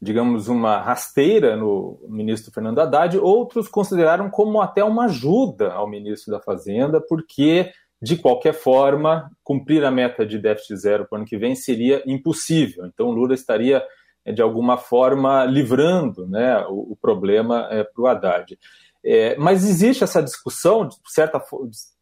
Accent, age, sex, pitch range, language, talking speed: Brazilian, 30-49, male, 120-180 Hz, Portuguese, 150 wpm